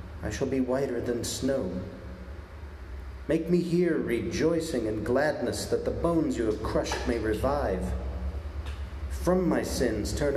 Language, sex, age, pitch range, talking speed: English, male, 40-59, 90-130 Hz, 140 wpm